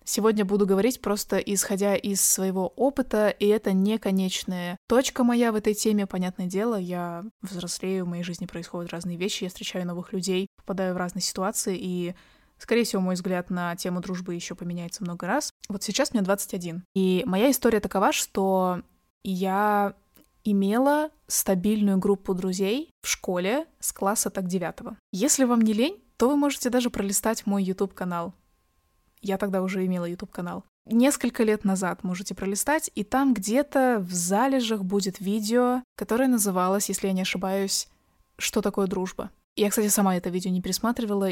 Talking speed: 160 wpm